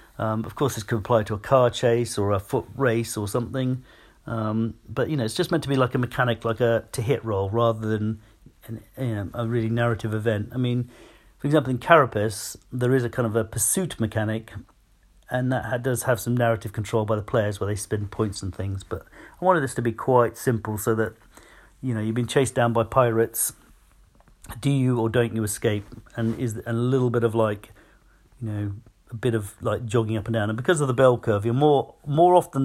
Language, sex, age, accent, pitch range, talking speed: English, male, 40-59, British, 110-125 Hz, 220 wpm